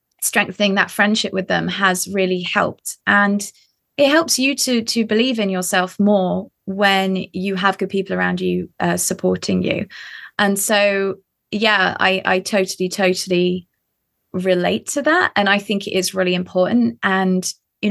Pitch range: 190-240 Hz